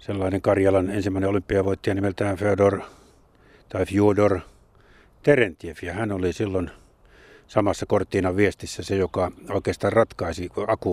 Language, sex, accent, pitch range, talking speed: Finnish, male, native, 90-110 Hz, 115 wpm